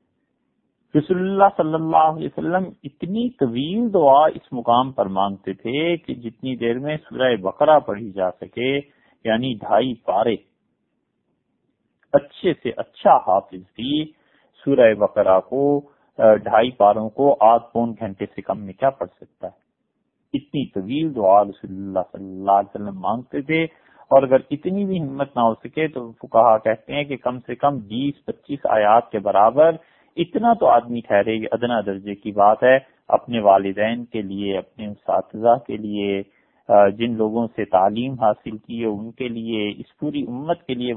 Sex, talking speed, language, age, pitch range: male, 130 wpm, English, 50-69, 105-140 Hz